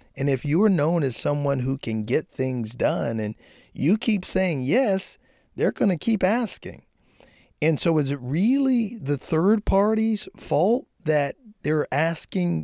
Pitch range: 120-165 Hz